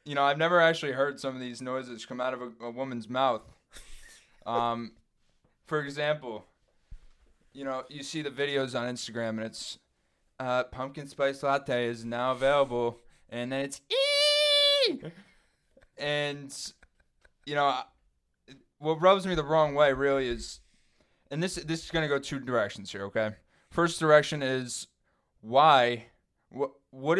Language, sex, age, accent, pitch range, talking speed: English, male, 20-39, American, 120-145 Hz, 150 wpm